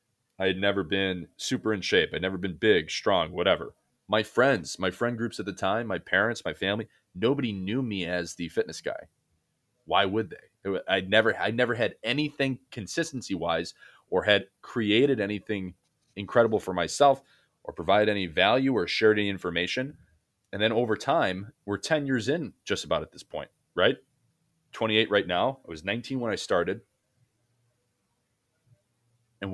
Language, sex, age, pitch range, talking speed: English, male, 30-49, 95-130 Hz, 165 wpm